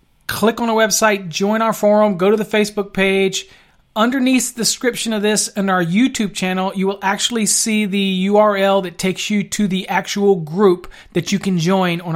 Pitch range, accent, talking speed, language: 185-215 Hz, American, 190 wpm, English